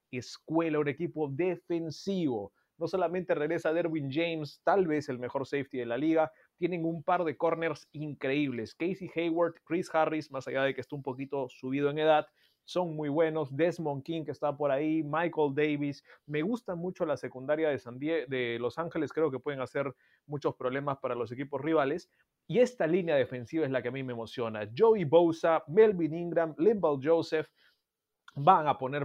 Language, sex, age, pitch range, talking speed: Spanish, male, 30-49, 135-170 Hz, 180 wpm